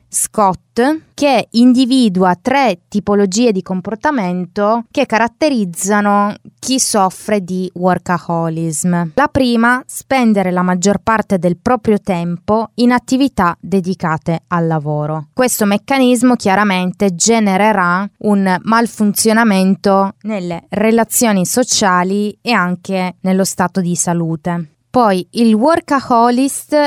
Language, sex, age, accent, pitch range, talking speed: Italian, female, 20-39, native, 180-230 Hz, 100 wpm